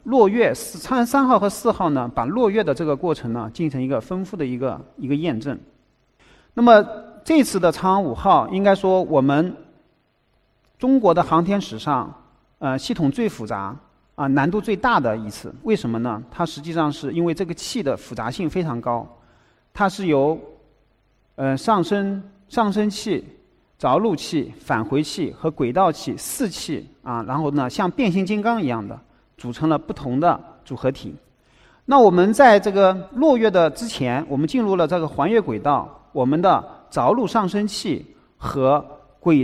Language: Chinese